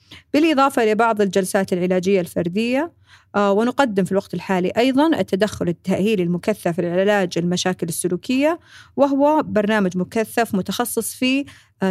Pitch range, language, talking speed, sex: 180-230 Hz, Arabic, 115 wpm, female